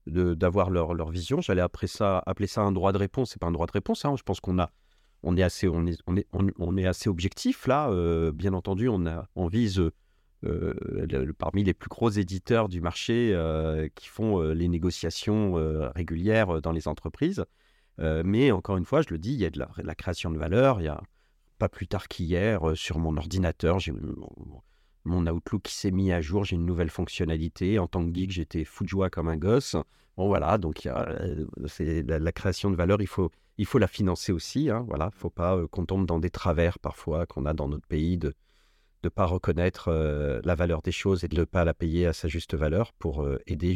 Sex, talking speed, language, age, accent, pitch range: male, 240 wpm, French, 40-59, French, 80-100 Hz